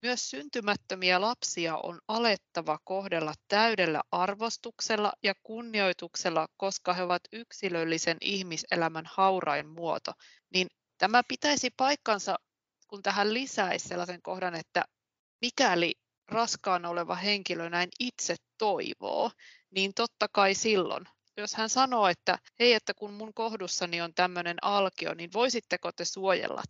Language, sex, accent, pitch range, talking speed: Finnish, female, native, 175-215 Hz, 120 wpm